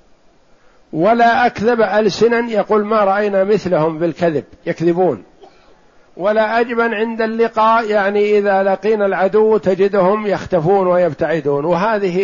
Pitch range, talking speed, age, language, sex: 155-195 Hz, 105 wpm, 60-79, Arabic, male